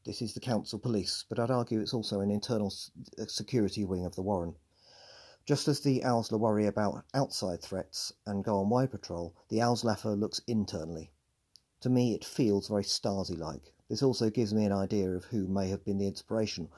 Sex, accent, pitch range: male, British, 95-120 Hz